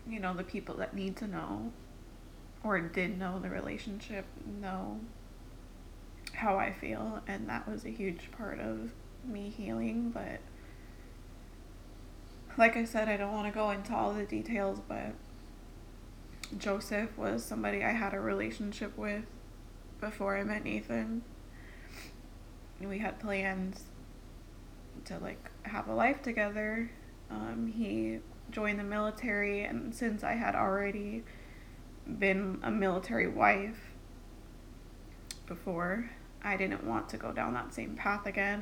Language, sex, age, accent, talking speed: English, female, 20-39, American, 135 wpm